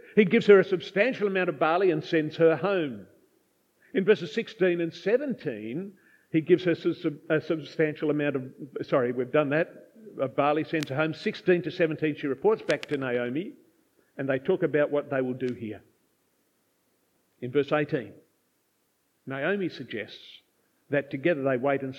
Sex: male